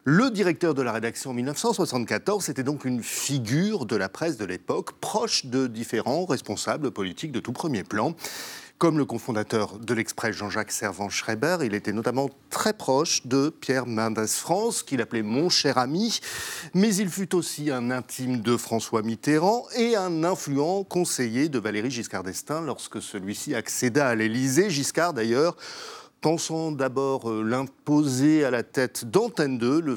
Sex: male